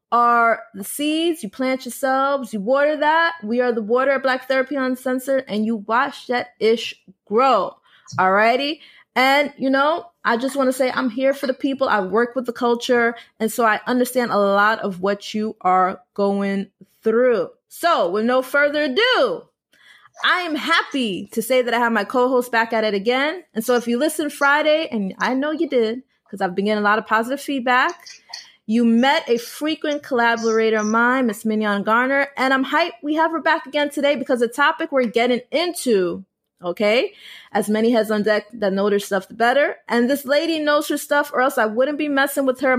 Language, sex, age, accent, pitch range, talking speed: English, female, 20-39, American, 220-280 Hz, 205 wpm